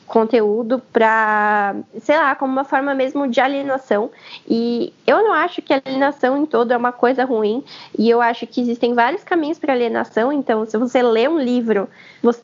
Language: Portuguese